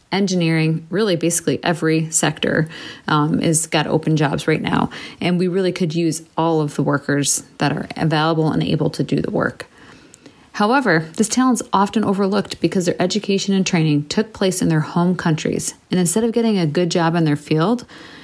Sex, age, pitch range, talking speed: female, 30-49, 160-195 Hz, 190 wpm